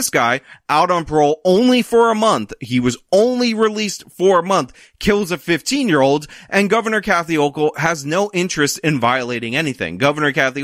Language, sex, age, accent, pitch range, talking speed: English, male, 30-49, American, 145-205 Hz, 190 wpm